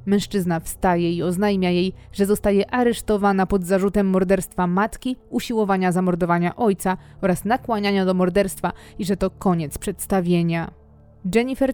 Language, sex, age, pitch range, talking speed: Polish, female, 20-39, 190-225 Hz, 130 wpm